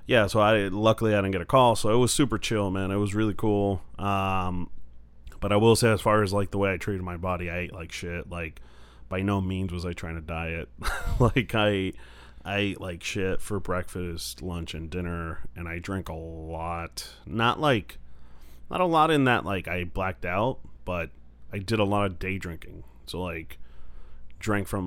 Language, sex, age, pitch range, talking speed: English, male, 30-49, 85-110 Hz, 205 wpm